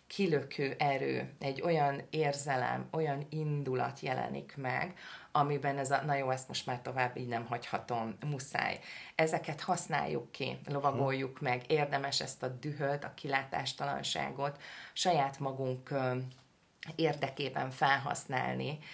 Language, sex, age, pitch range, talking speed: Hungarian, female, 30-49, 135-155 Hz, 115 wpm